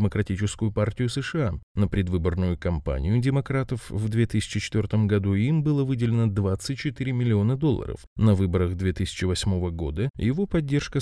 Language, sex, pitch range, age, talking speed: Russian, male, 95-130 Hz, 20-39, 120 wpm